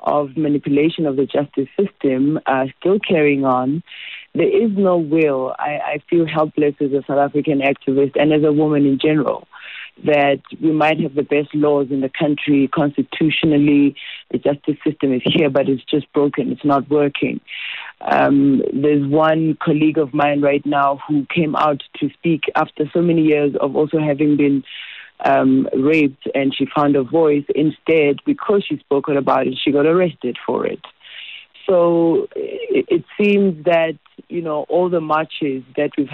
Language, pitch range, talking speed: English, 145-165 Hz, 170 wpm